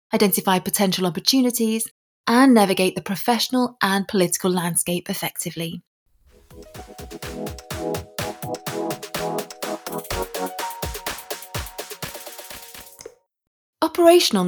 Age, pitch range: 20-39, 185-250 Hz